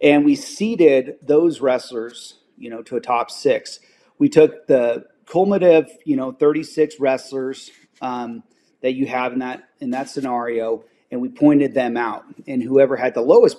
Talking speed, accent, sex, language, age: 170 wpm, American, male, English, 30-49